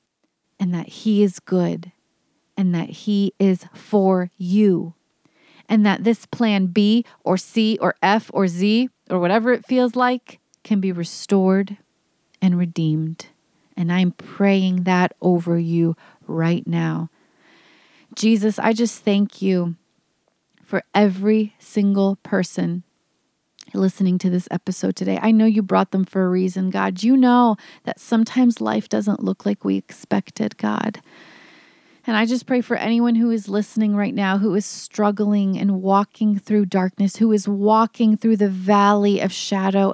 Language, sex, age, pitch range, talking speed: English, female, 30-49, 185-220 Hz, 150 wpm